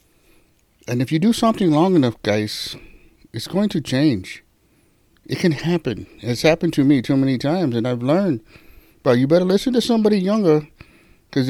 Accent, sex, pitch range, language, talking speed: American, male, 120-160 Hz, English, 170 wpm